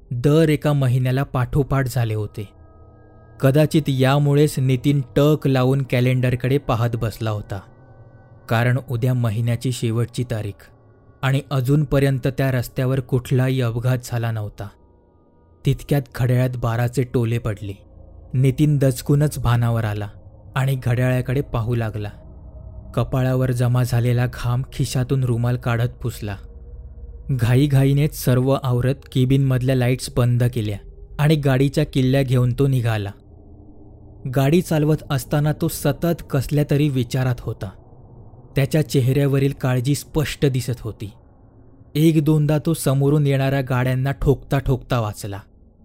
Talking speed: 95 wpm